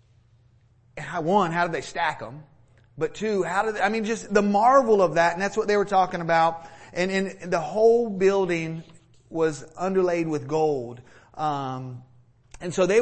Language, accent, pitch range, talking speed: English, American, 150-205 Hz, 170 wpm